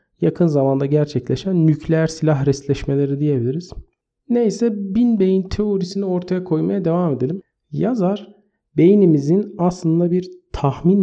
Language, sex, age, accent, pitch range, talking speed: Turkish, male, 50-69, native, 140-190 Hz, 110 wpm